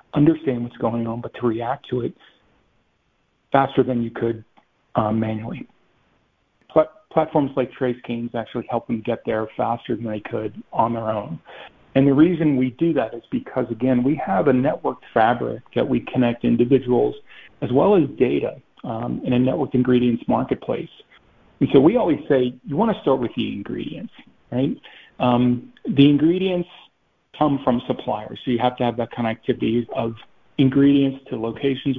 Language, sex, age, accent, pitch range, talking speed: English, male, 50-69, American, 115-135 Hz, 175 wpm